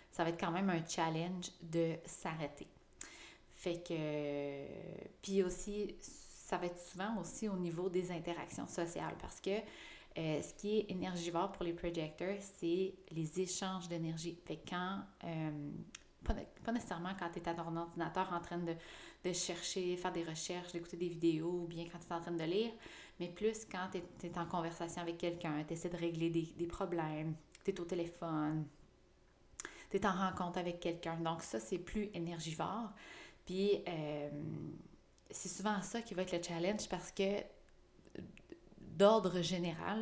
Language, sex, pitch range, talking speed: French, female, 170-195 Hz, 170 wpm